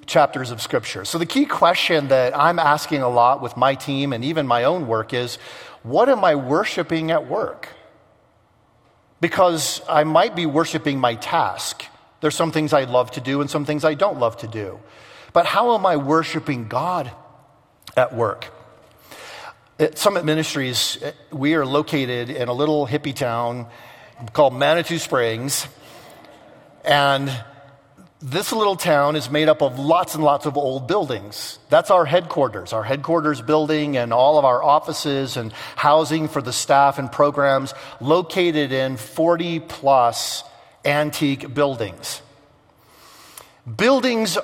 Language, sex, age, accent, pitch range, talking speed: English, male, 40-59, American, 125-155 Hz, 145 wpm